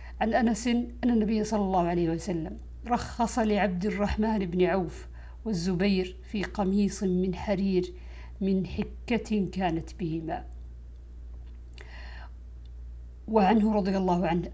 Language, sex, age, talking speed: Arabic, female, 50-69, 105 wpm